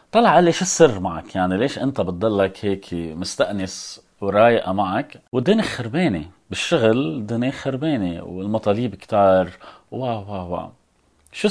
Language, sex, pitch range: Arabic, male, 90-115 Hz